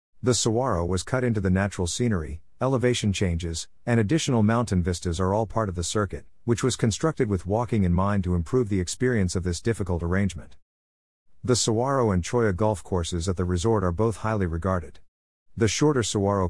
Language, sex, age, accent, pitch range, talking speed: English, male, 50-69, American, 90-115 Hz, 185 wpm